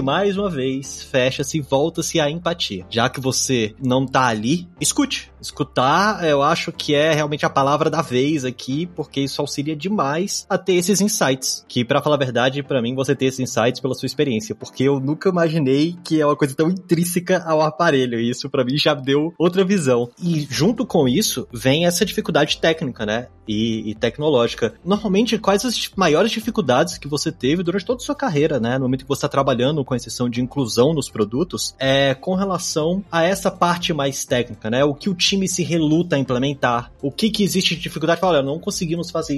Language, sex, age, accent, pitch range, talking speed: Portuguese, male, 20-39, Brazilian, 130-180 Hz, 205 wpm